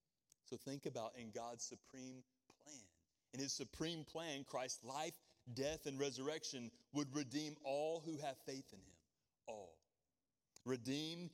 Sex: male